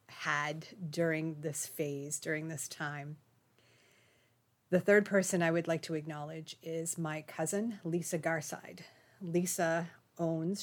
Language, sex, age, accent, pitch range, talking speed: English, female, 40-59, American, 155-180 Hz, 125 wpm